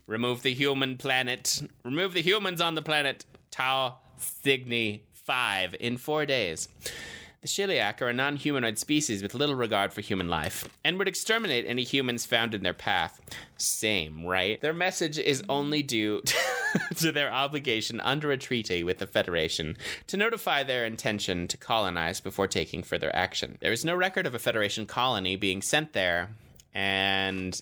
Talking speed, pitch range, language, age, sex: 165 wpm, 100-145 Hz, English, 20-39, male